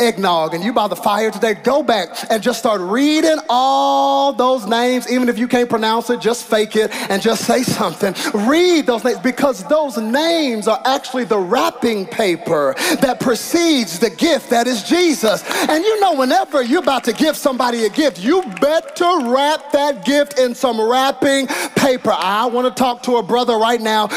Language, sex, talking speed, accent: English, male, 190 wpm, American